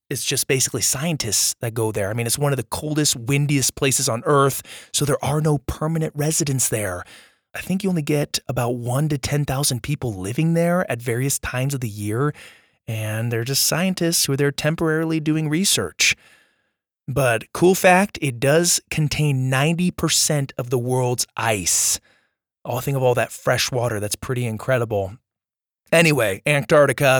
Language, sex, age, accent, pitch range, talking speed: English, male, 20-39, American, 125-165 Hz, 170 wpm